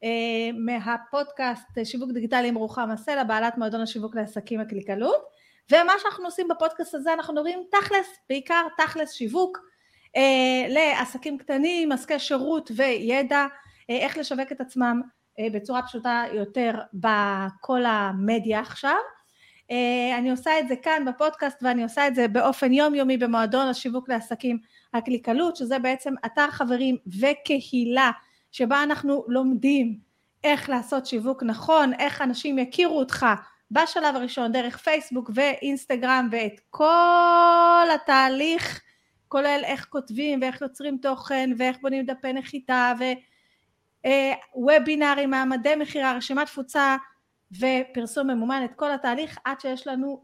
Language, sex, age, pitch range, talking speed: Hebrew, female, 30-49, 240-290 Hz, 125 wpm